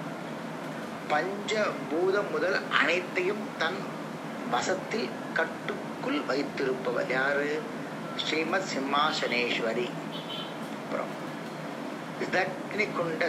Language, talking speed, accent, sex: Tamil, 45 wpm, native, male